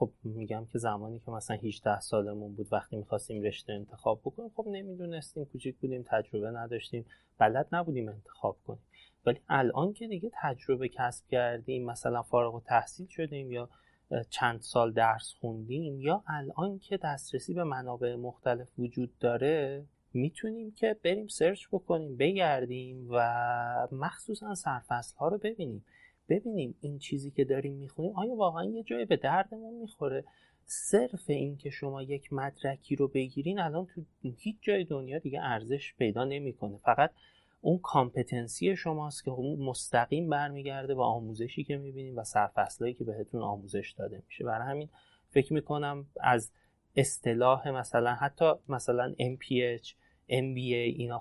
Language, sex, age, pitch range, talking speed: Persian, male, 30-49, 120-150 Hz, 140 wpm